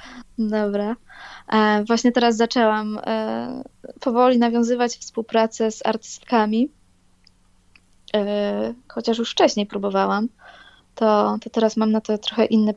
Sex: female